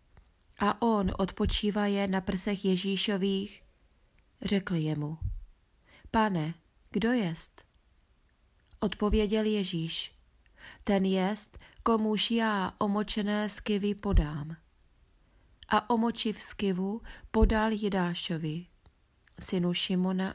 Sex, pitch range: female, 160-200 Hz